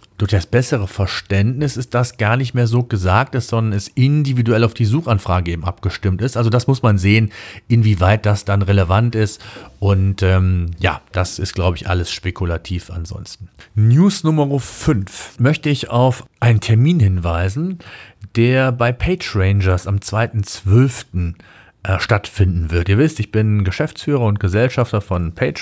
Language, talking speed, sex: German, 155 wpm, male